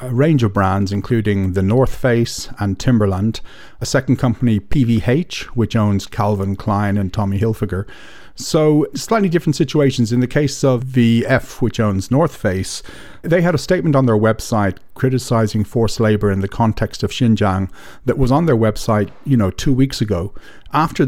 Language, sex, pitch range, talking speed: English, male, 100-130 Hz, 170 wpm